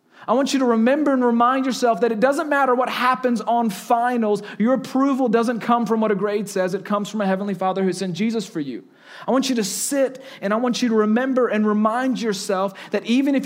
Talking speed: 235 wpm